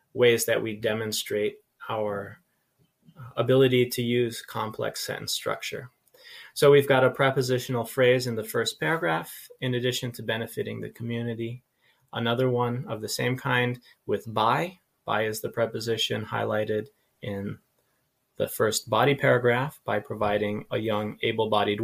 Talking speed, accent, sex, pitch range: 135 wpm, American, male, 110-130 Hz